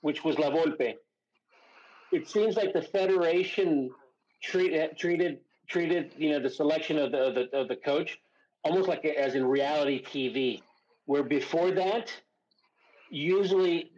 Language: English